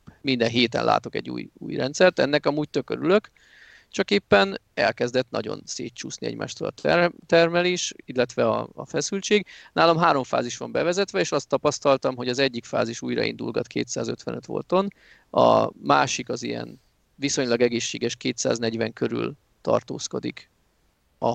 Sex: male